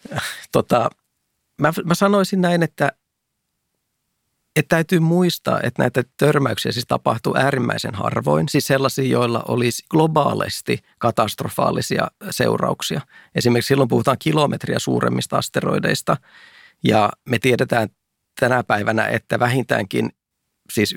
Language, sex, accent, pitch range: Finnish, male, native, 100-120 Hz